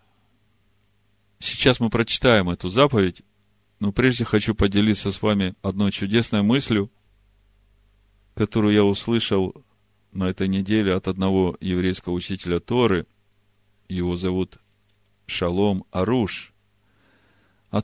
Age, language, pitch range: 40-59, Russian, 100-120 Hz